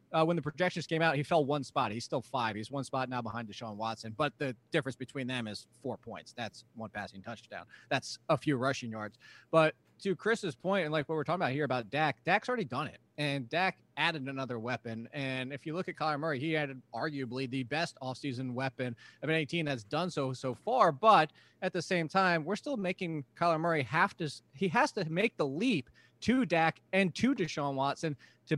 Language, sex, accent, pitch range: English, male, American, 130-165 Hz